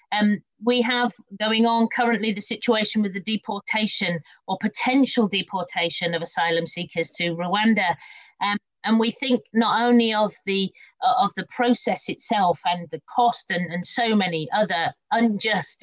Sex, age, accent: female, 40-59, British